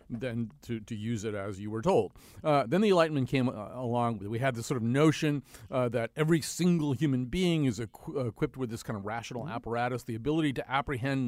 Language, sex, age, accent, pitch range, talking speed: English, male, 40-59, American, 115-155 Hz, 215 wpm